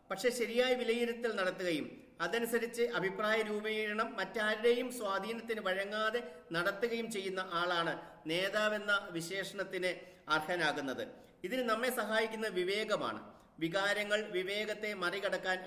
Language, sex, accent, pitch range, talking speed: Malayalam, male, native, 180-220 Hz, 90 wpm